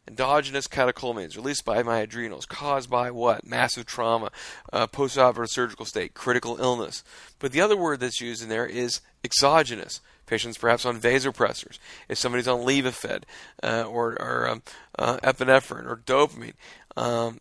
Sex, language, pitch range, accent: male, English, 115-135 Hz, American